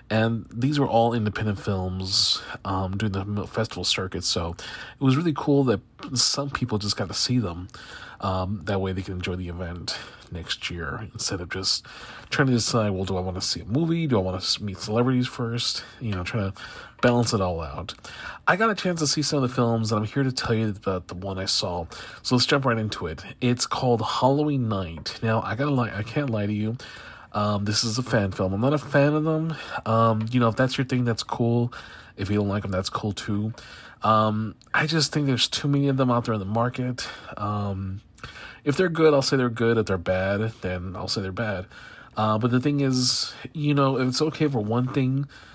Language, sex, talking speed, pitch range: English, male, 230 wpm, 100-135 Hz